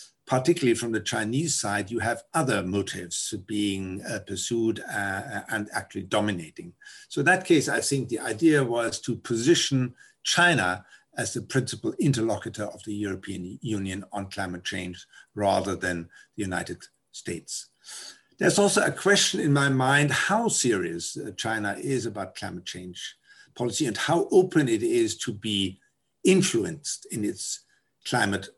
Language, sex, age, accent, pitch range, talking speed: English, male, 60-79, German, 105-160 Hz, 145 wpm